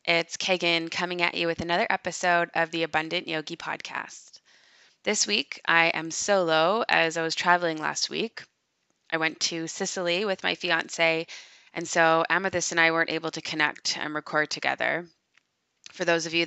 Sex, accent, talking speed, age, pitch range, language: female, American, 170 wpm, 20-39, 160-175 Hz, English